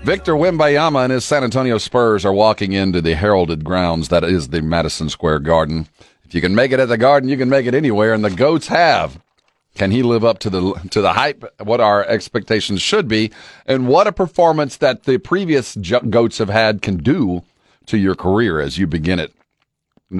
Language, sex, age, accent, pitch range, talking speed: English, male, 50-69, American, 95-140 Hz, 210 wpm